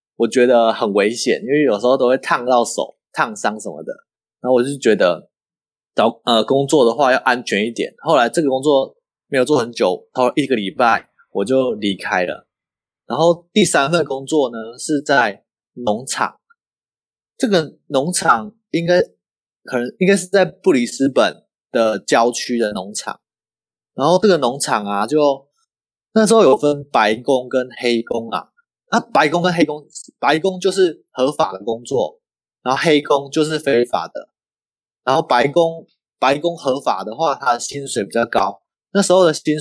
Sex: male